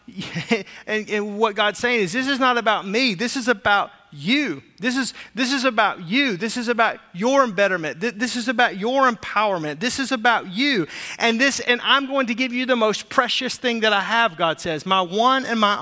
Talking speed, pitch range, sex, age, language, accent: 220 wpm, 195-250 Hz, male, 30-49, English, American